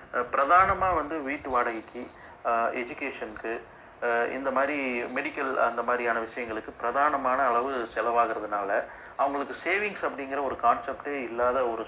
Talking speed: 105 wpm